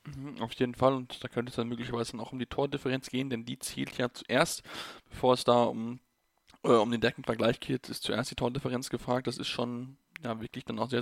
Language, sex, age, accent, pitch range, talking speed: German, male, 10-29, German, 120-145 Hz, 225 wpm